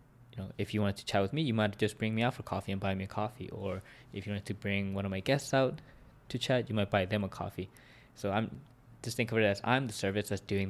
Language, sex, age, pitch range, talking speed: English, male, 20-39, 95-120 Hz, 295 wpm